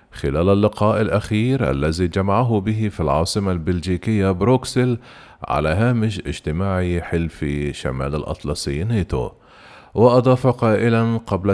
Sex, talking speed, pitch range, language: male, 105 wpm, 90-115 Hz, Arabic